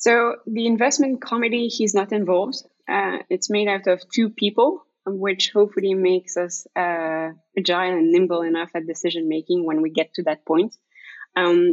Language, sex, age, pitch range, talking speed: English, female, 20-39, 165-210 Hz, 170 wpm